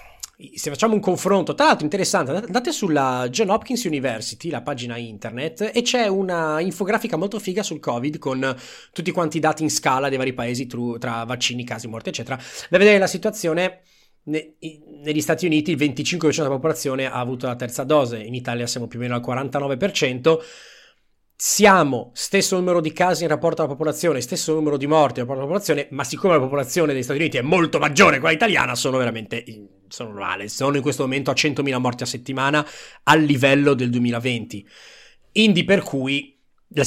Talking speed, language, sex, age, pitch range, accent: 185 wpm, Italian, male, 30-49, 130-175 Hz, native